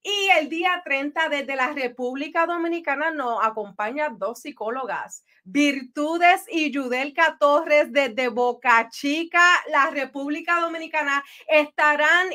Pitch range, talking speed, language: 245-315 Hz, 115 wpm, English